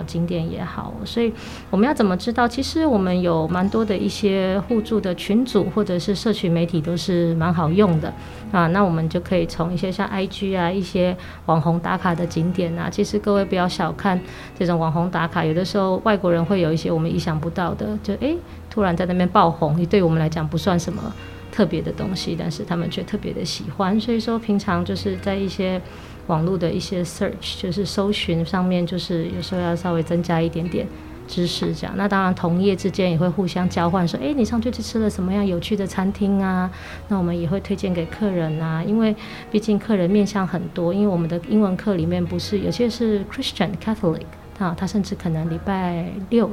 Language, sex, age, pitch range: Chinese, female, 20-39, 170-200 Hz